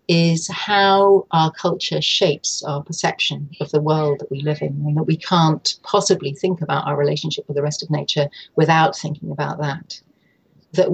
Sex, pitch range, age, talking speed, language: female, 155-190 Hz, 40-59, 180 wpm, English